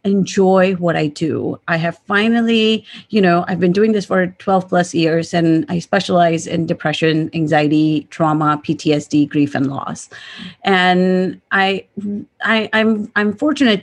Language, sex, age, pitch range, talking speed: English, female, 30-49, 160-190 Hz, 150 wpm